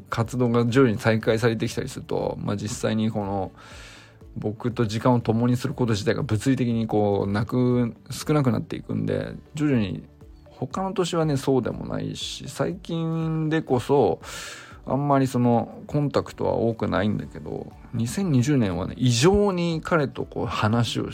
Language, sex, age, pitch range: Japanese, male, 20-39, 110-140 Hz